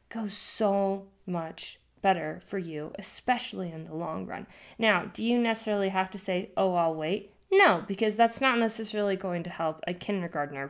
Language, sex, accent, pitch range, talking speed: English, female, American, 180-230 Hz, 175 wpm